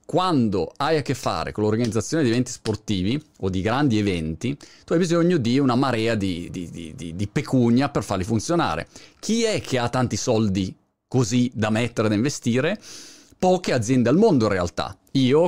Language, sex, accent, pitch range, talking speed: Italian, male, native, 105-145 Hz, 180 wpm